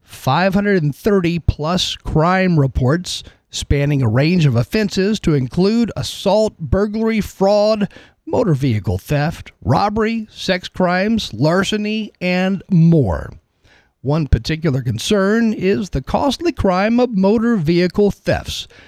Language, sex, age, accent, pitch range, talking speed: English, male, 50-69, American, 140-205 Hz, 120 wpm